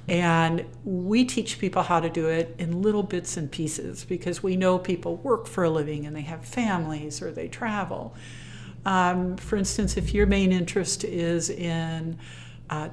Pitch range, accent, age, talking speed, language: 150-185 Hz, American, 60-79, 175 wpm, English